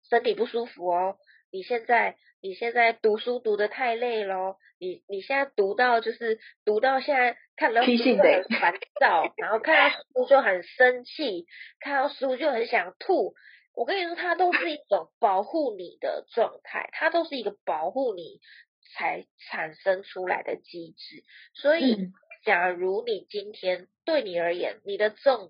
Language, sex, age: Chinese, female, 20-39